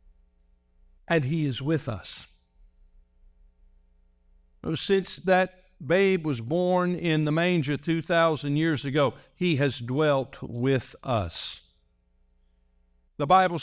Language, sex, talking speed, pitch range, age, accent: English, male, 100 wpm, 105-170 Hz, 60-79, American